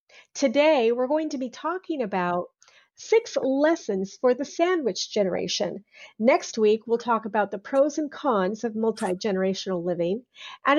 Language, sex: English, female